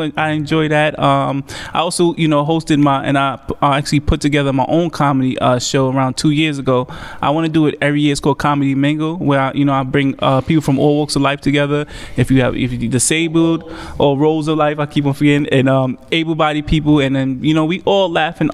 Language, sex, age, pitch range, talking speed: English, male, 20-39, 135-155 Hz, 245 wpm